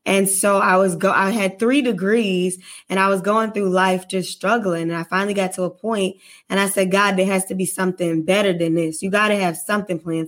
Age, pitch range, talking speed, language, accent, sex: 20-39, 180-210 Hz, 240 wpm, English, American, female